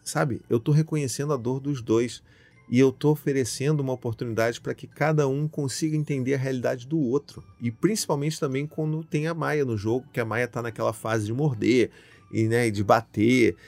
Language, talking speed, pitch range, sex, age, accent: Portuguese, 195 wpm, 110-140 Hz, male, 30-49, Brazilian